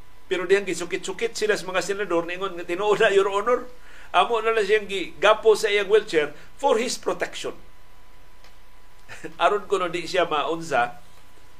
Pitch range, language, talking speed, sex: 150-215 Hz, Filipino, 175 wpm, male